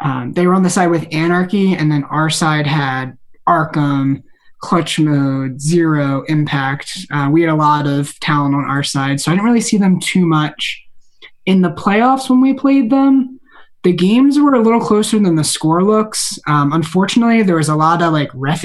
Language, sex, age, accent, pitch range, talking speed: English, male, 20-39, American, 160-205 Hz, 200 wpm